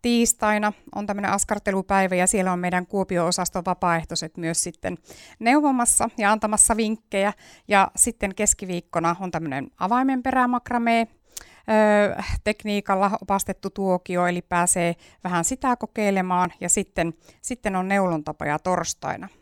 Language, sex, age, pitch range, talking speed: Finnish, female, 60-79, 180-230 Hz, 115 wpm